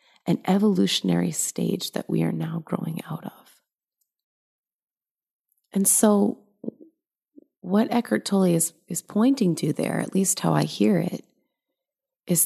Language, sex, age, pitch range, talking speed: English, female, 30-49, 155-205 Hz, 130 wpm